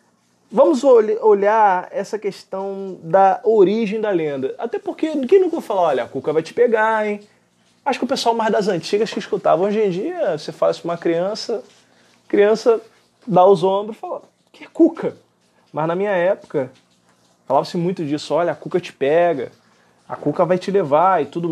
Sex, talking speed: male, 185 wpm